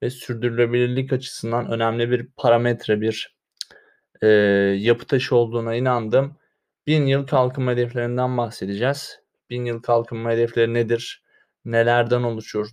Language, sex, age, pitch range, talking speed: Turkish, male, 20-39, 120-140 Hz, 115 wpm